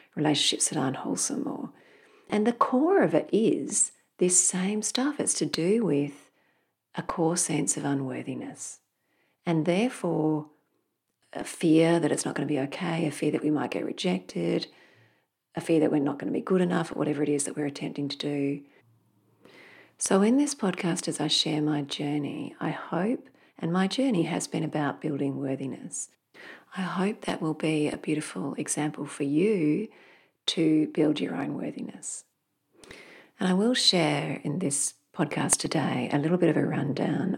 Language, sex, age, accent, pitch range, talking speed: English, female, 40-59, Australian, 145-185 Hz, 175 wpm